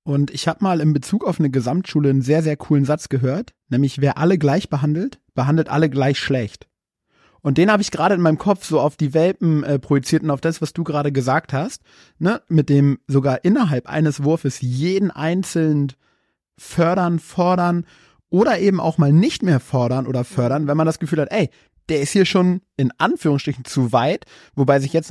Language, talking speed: German, 200 wpm